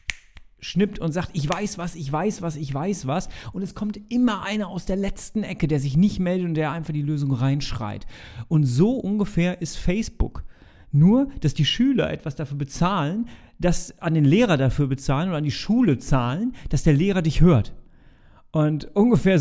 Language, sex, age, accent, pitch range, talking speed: German, male, 40-59, German, 145-200 Hz, 190 wpm